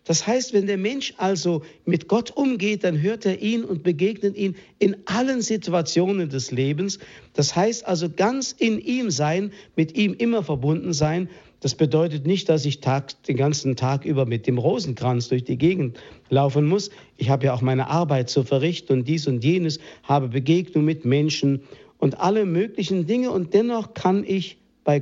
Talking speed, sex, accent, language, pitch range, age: 180 wpm, male, German, German, 135-190 Hz, 50-69